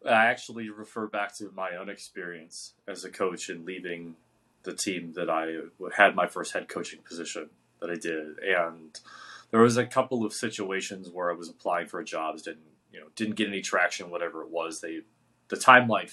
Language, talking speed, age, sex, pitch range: English, 195 wpm, 30-49, male, 85-110 Hz